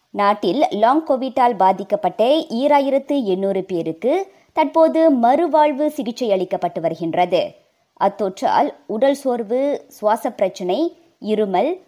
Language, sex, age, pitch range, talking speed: Tamil, male, 20-39, 210-315 Hz, 90 wpm